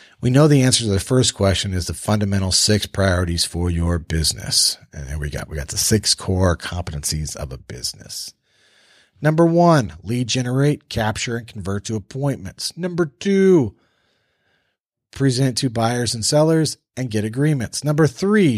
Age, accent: 40-59, American